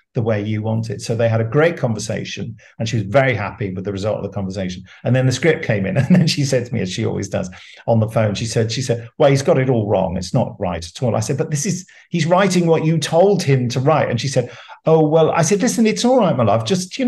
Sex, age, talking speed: male, 50-69, 295 wpm